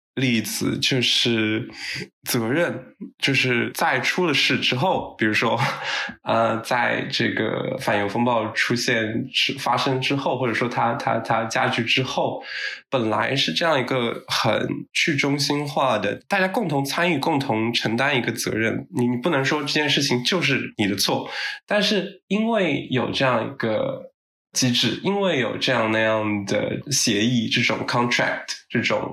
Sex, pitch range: male, 115-145 Hz